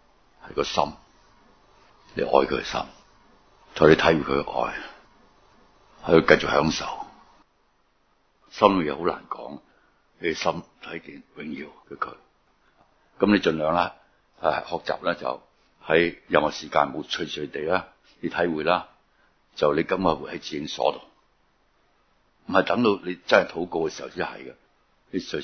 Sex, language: male, Chinese